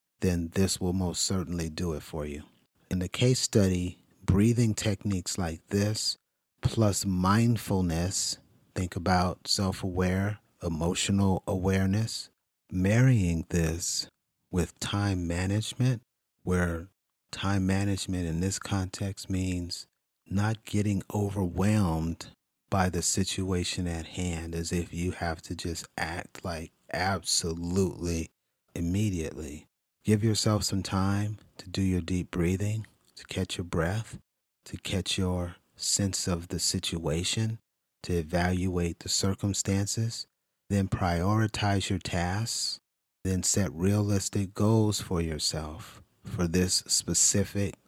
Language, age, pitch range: English, 40-59, 90-100 Hz